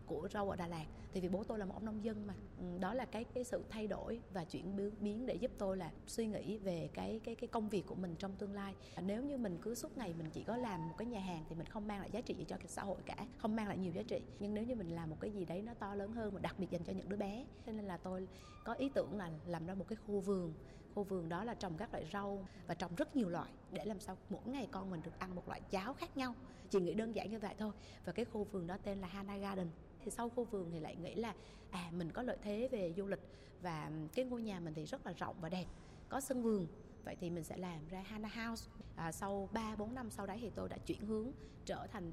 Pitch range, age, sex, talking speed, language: 180-220 Hz, 20-39, female, 290 wpm, Vietnamese